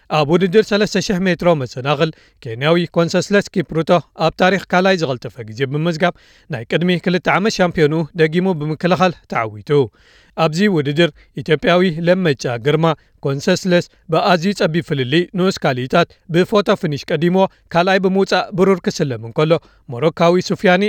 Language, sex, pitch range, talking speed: Amharic, male, 150-185 Hz, 115 wpm